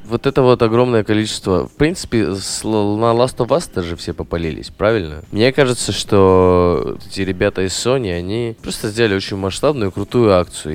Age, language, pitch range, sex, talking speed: 20-39, Russian, 90-115 Hz, male, 155 wpm